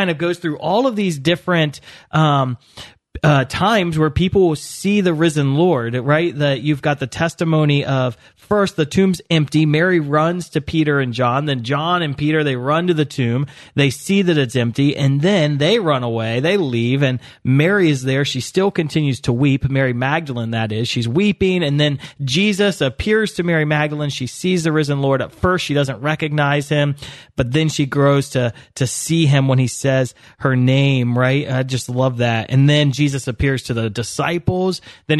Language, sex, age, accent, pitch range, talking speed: English, male, 30-49, American, 130-165 Hz, 195 wpm